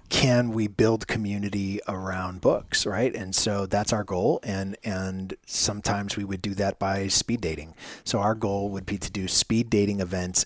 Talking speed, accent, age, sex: 185 wpm, American, 30-49, male